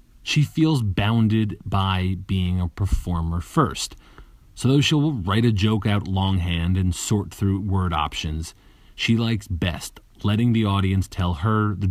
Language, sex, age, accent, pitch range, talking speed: English, male, 30-49, American, 85-105 Hz, 150 wpm